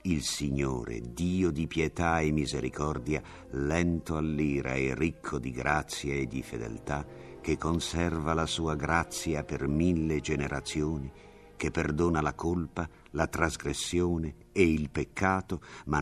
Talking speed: 125 wpm